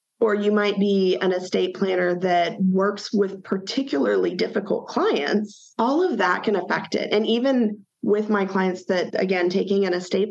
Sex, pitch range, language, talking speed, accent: female, 185-215 Hz, English, 170 wpm, American